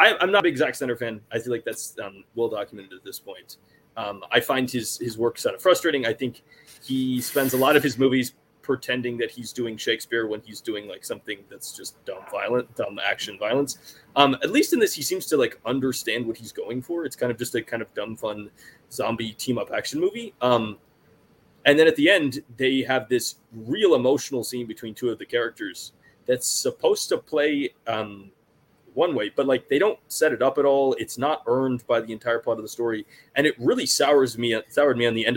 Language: English